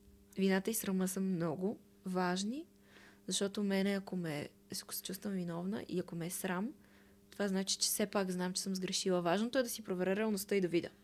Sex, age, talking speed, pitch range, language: female, 20-39, 195 wpm, 165-205 Hz, Bulgarian